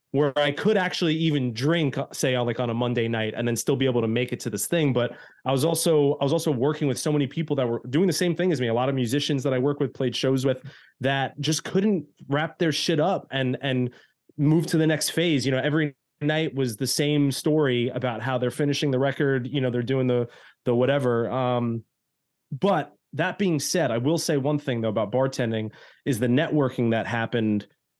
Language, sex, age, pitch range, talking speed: English, male, 20-39, 125-155 Hz, 230 wpm